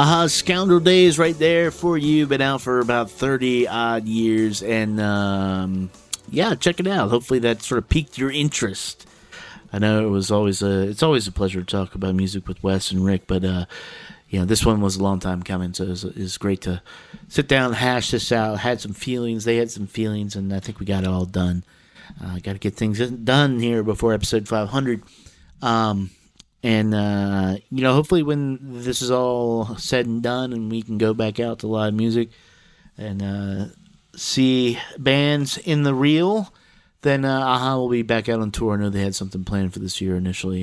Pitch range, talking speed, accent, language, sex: 95-130 Hz, 205 wpm, American, English, male